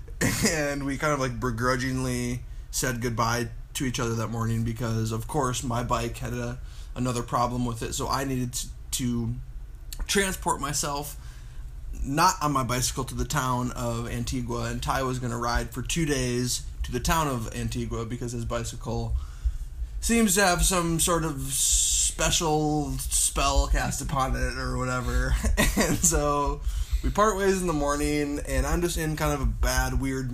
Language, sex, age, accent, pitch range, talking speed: English, male, 20-39, American, 115-135 Hz, 170 wpm